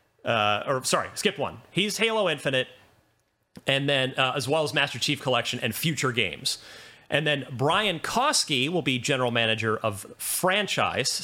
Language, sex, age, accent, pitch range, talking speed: English, male, 30-49, American, 120-155 Hz, 160 wpm